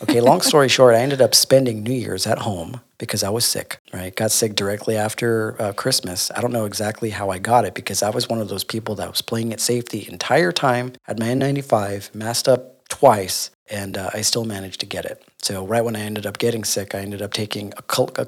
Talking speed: 245 wpm